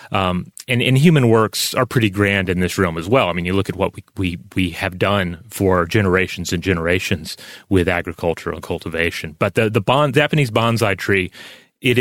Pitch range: 95-125 Hz